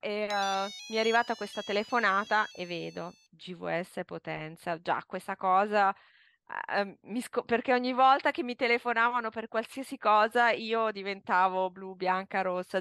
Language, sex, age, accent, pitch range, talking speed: Italian, female, 20-39, native, 195-255 Hz, 145 wpm